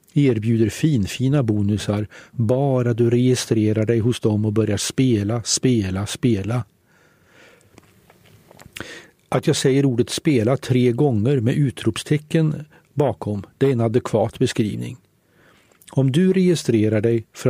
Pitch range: 110-145 Hz